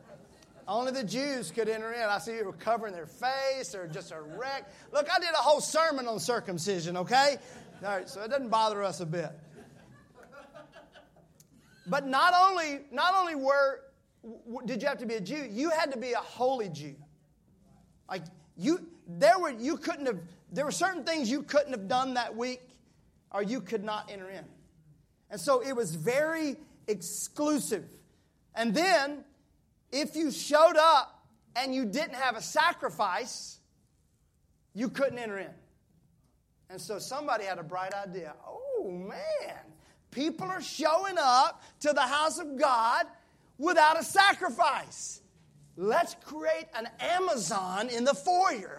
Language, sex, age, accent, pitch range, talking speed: English, male, 30-49, American, 205-300 Hz, 155 wpm